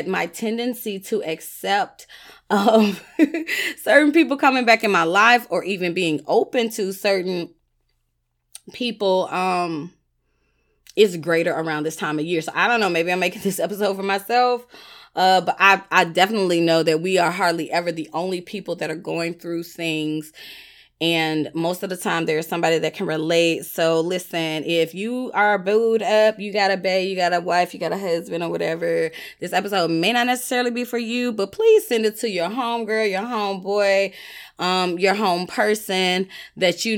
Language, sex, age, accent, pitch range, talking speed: English, female, 20-39, American, 165-220 Hz, 180 wpm